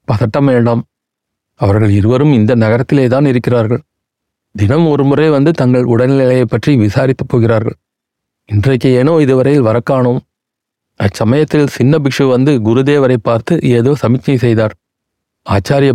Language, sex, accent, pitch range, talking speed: Tamil, male, native, 115-140 Hz, 115 wpm